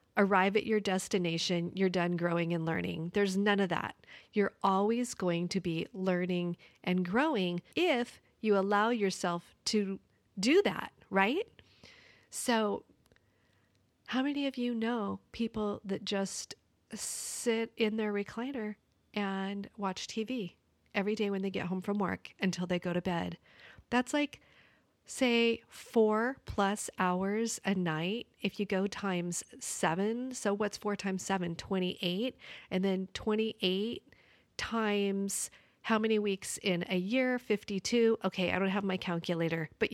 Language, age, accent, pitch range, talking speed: English, 40-59, American, 185-225 Hz, 145 wpm